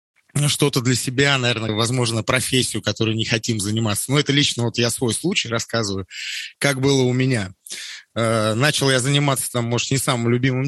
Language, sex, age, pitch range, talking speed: Russian, male, 30-49, 105-135 Hz, 170 wpm